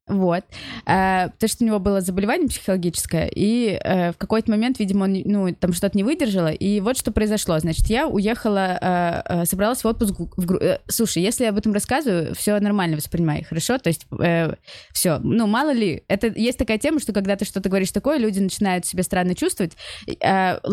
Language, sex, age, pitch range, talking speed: Russian, female, 20-39, 180-225 Hz, 200 wpm